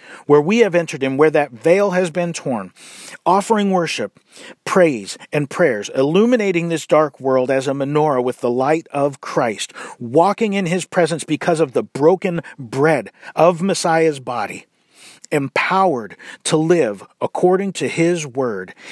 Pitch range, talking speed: 145-195 Hz, 150 wpm